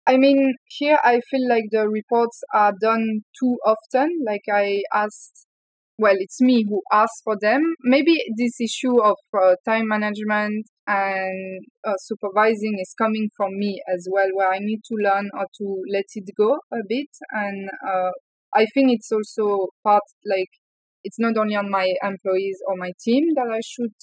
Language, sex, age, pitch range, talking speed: English, female, 20-39, 195-230 Hz, 175 wpm